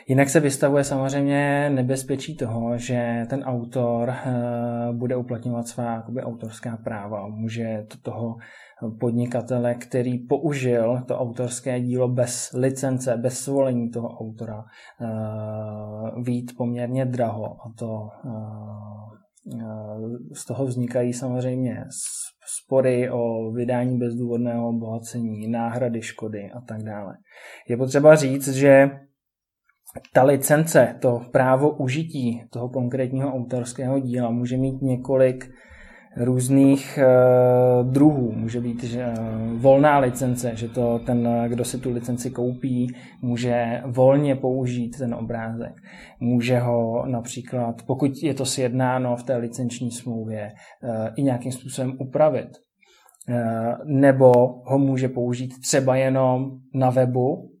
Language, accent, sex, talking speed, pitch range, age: Czech, native, male, 105 wpm, 120-130 Hz, 20-39